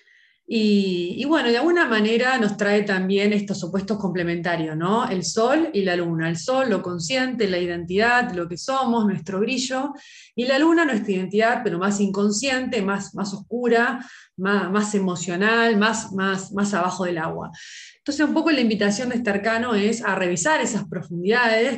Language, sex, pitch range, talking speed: Spanish, female, 190-245 Hz, 170 wpm